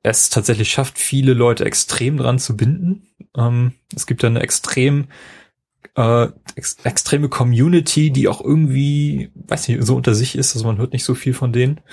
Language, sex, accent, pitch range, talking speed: German, male, German, 110-135 Hz, 185 wpm